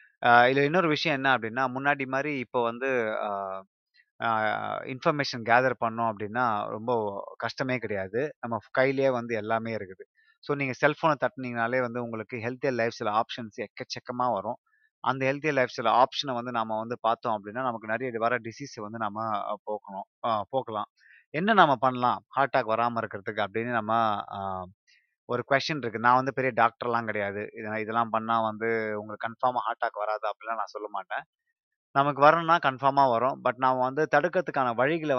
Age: 30-49